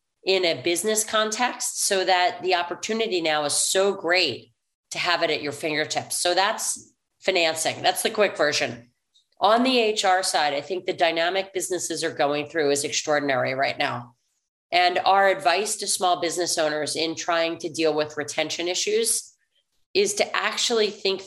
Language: English